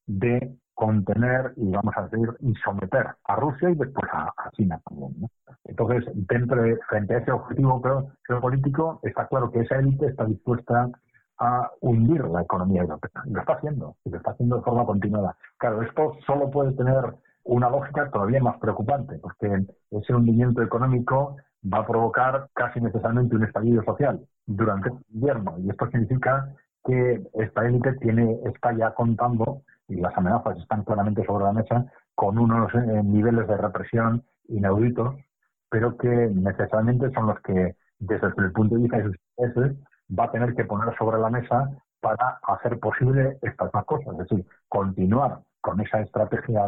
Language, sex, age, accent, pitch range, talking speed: Spanish, male, 50-69, Spanish, 105-125 Hz, 165 wpm